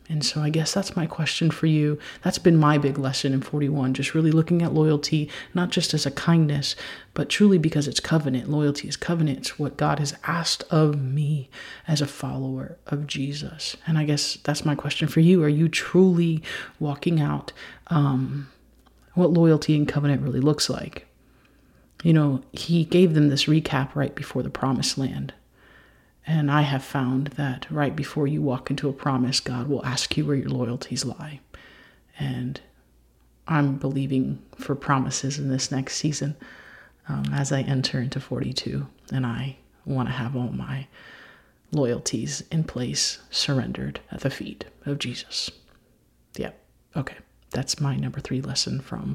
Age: 30-49